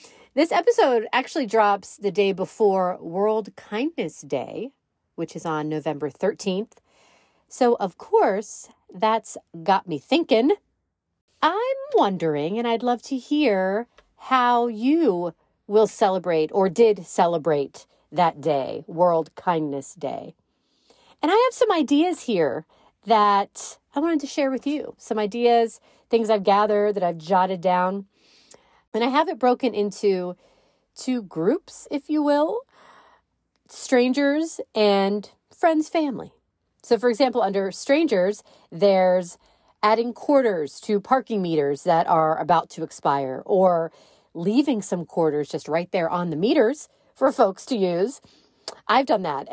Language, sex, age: English, female, 40-59